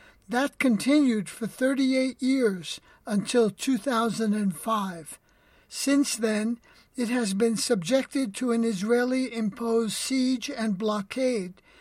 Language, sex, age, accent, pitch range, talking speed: English, male, 60-79, American, 215-255 Hz, 95 wpm